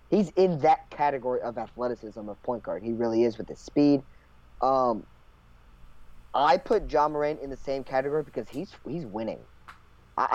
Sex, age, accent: male, 30-49, American